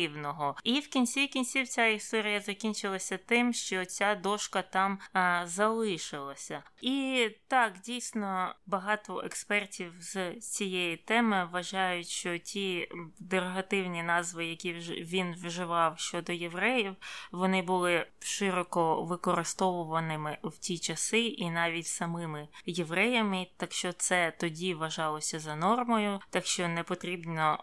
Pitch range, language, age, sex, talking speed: 170-210 Hz, Ukrainian, 20-39, female, 115 wpm